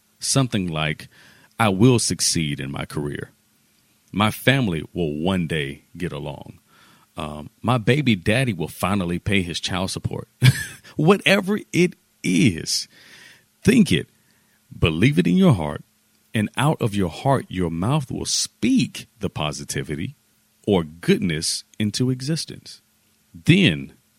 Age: 40-59